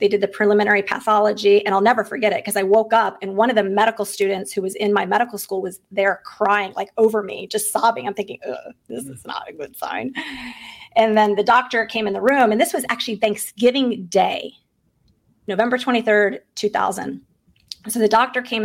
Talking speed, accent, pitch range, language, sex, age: 205 wpm, American, 200-225 Hz, English, female, 30-49